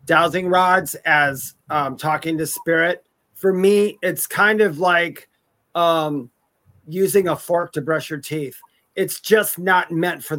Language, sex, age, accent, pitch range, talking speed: English, male, 30-49, American, 165-200 Hz, 150 wpm